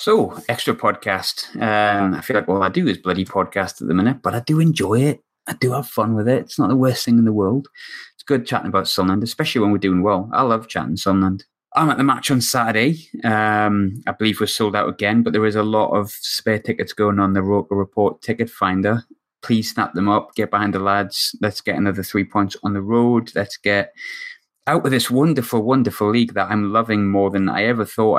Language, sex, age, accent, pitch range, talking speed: English, male, 20-39, British, 95-115 Hz, 230 wpm